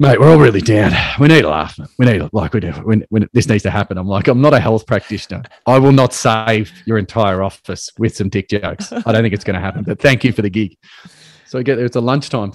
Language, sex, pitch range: English, male, 100-130 Hz